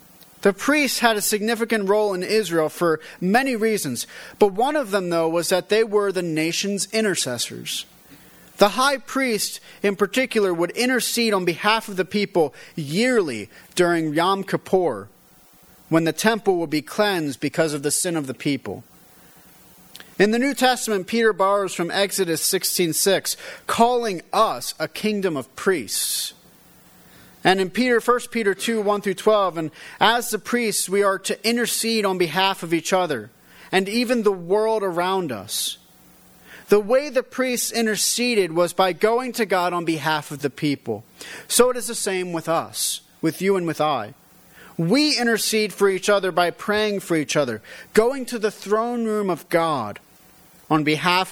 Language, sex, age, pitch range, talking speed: English, male, 30-49, 170-220 Hz, 165 wpm